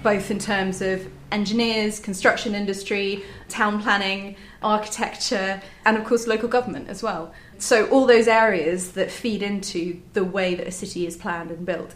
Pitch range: 185-215 Hz